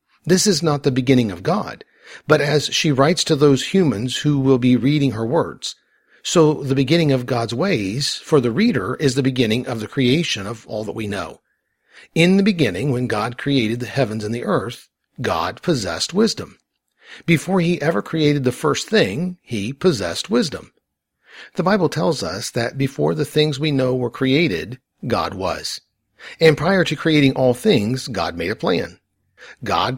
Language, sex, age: English, male, 50-69